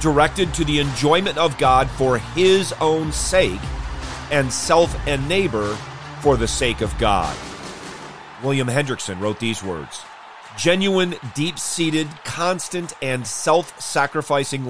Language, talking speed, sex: English, 120 wpm, male